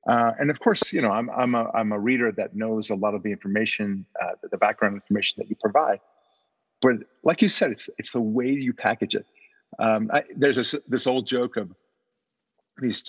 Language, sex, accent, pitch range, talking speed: English, male, American, 105-125 Hz, 215 wpm